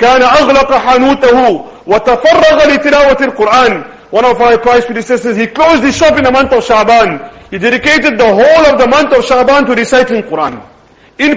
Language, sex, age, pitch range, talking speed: English, male, 40-59, 230-275 Hz, 145 wpm